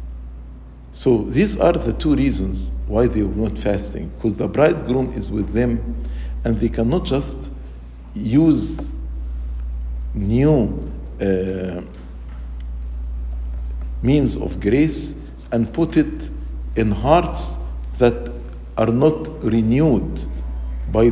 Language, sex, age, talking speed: English, male, 50-69, 105 wpm